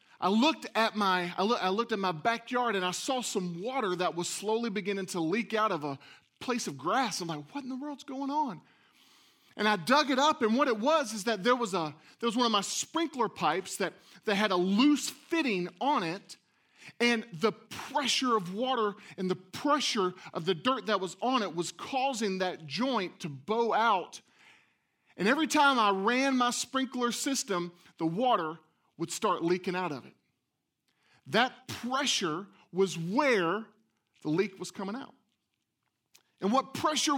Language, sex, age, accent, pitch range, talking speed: English, male, 30-49, American, 190-265 Hz, 185 wpm